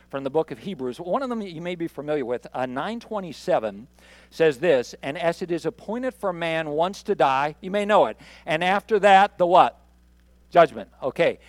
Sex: male